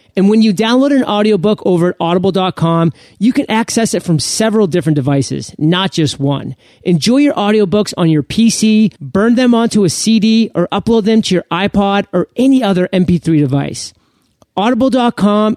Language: English